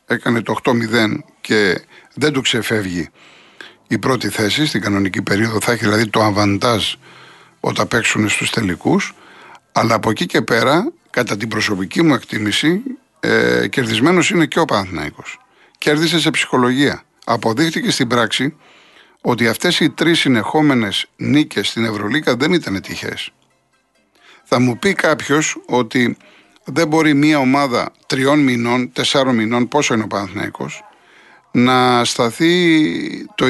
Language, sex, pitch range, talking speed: Greek, male, 115-155 Hz, 135 wpm